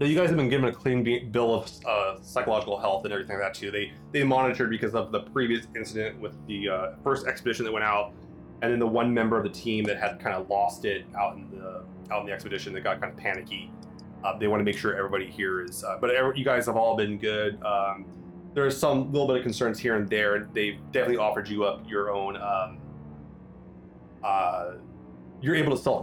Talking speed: 230 wpm